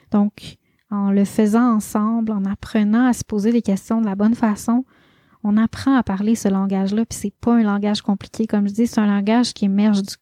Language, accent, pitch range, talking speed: French, Canadian, 205-235 Hz, 225 wpm